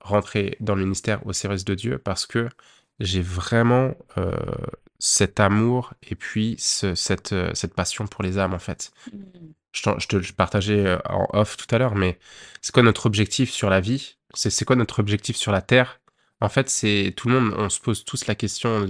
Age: 20-39